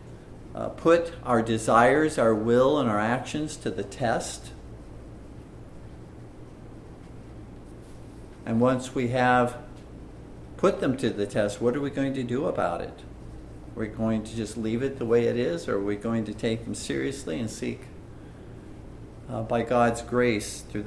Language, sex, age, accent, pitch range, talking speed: English, male, 50-69, American, 110-130 Hz, 160 wpm